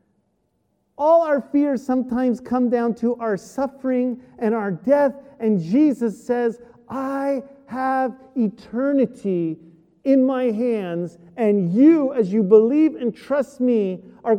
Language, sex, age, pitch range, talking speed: English, male, 40-59, 190-265 Hz, 125 wpm